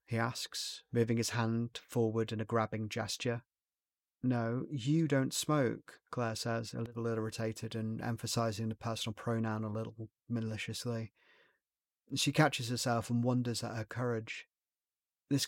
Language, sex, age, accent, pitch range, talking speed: English, male, 30-49, British, 110-125 Hz, 140 wpm